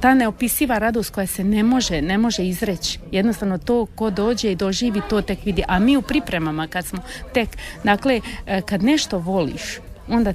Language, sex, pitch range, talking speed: Croatian, female, 185-230 Hz, 185 wpm